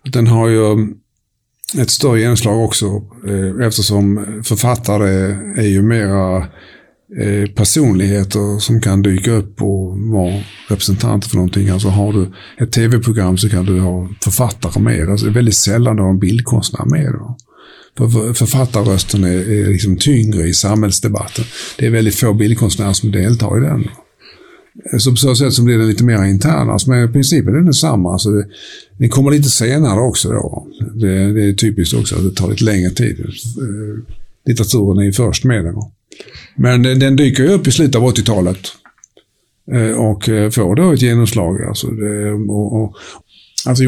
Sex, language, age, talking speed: male, English, 50-69, 160 wpm